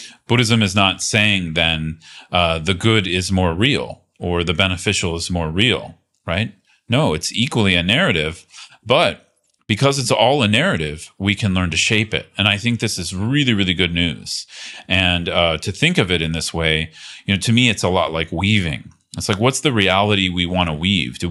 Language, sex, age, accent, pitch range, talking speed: English, male, 40-59, American, 85-105 Hz, 205 wpm